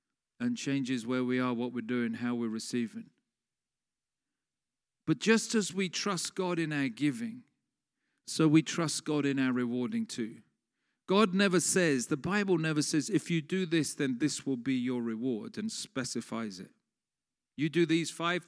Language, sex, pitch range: English, male, 140-190 Hz